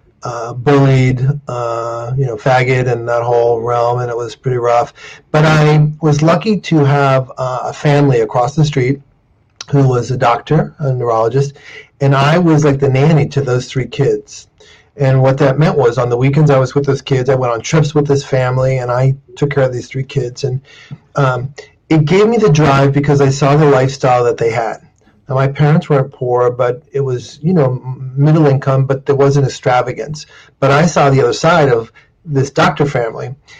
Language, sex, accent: English, male, American